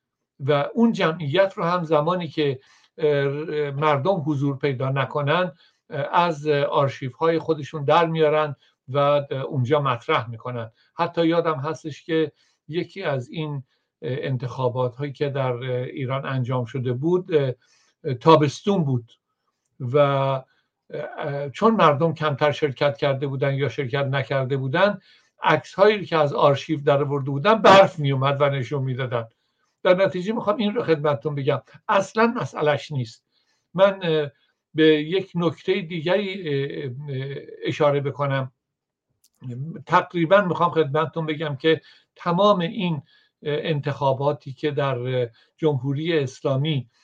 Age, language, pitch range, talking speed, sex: 60-79, Persian, 140-170 Hz, 115 wpm, male